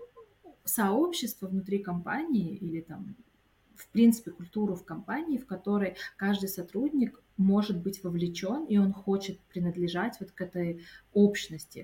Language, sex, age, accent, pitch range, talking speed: Russian, female, 20-39, native, 175-225 Hz, 125 wpm